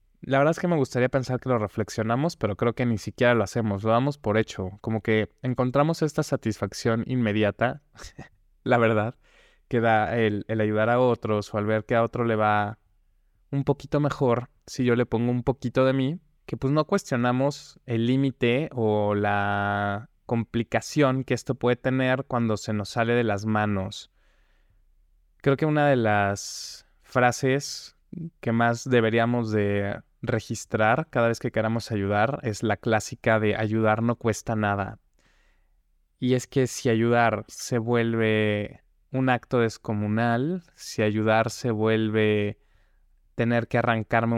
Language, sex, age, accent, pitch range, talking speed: Spanish, male, 20-39, Mexican, 105-125 Hz, 160 wpm